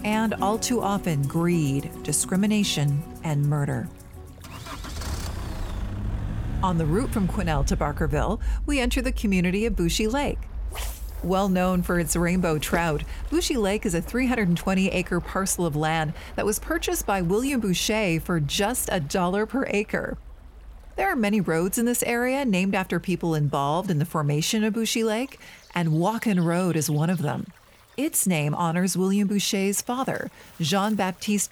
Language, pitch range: English, 160-215 Hz